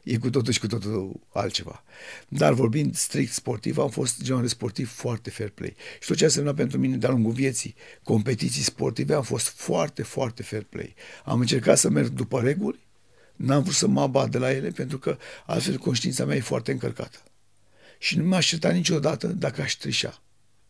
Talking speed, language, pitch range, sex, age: 190 wpm, Romanian, 110-140 Hz, male, 60-79